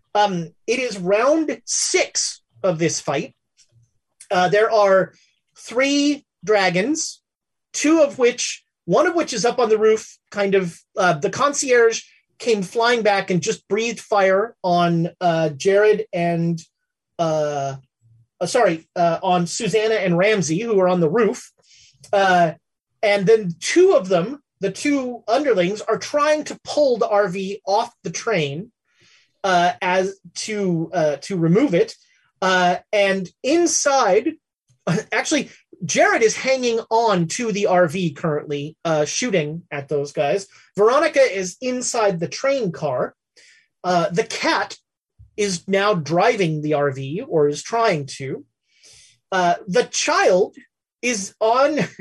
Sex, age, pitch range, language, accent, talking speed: male, 30-49, 170-235 Hz, English, American, 135 wpm